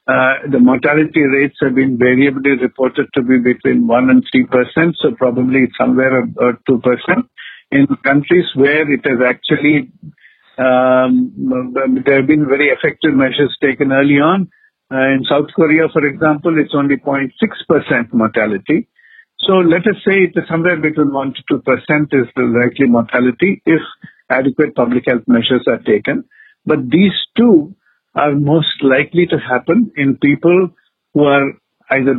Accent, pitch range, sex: Indian, 130-165 Hz, male